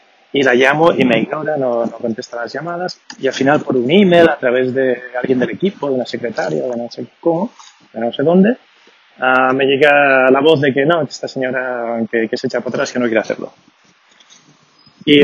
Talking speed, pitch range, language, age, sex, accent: 215 wpm, 125-150 Hz, Spanish, 20-39, male, Spanish